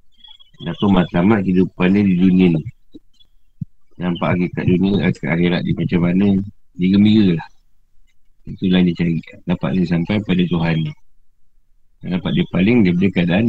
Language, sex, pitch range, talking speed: Malay, male, 90-110 Hz, 150 wpm